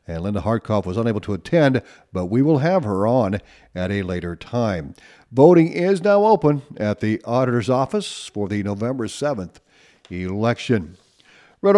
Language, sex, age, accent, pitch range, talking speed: English, male, 50-69, American, 115-145 Hz, 160 wpm